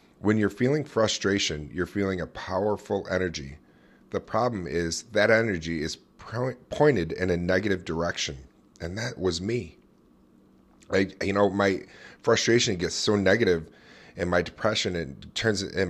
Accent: American